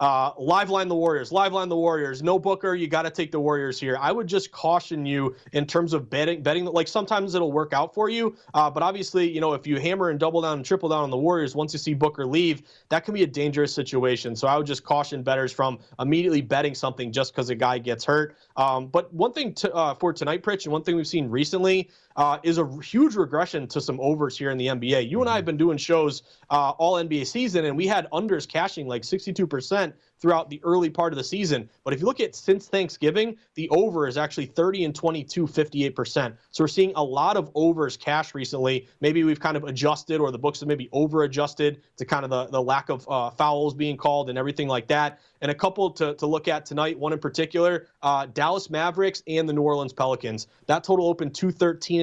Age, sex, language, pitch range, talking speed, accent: 30-49, male, English, 145-170 Hz, 235 wpm, American